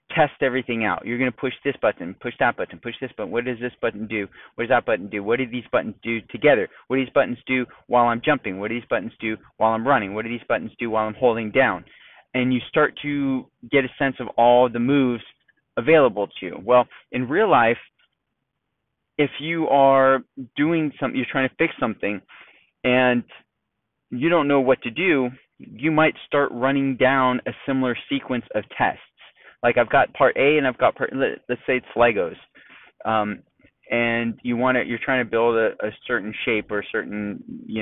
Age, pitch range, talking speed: 20-39, 115-135 Hz, 210 wpm